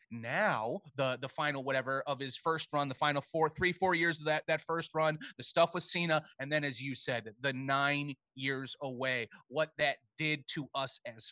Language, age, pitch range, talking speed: English, 30-49, 155-210 Hz, 205 wpm